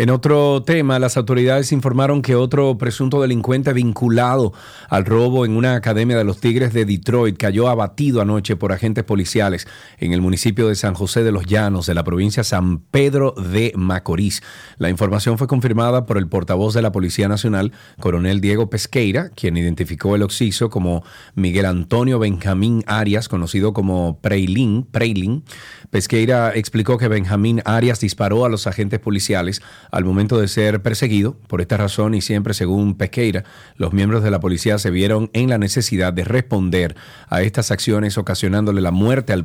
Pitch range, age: 95-120 Hz, 40-59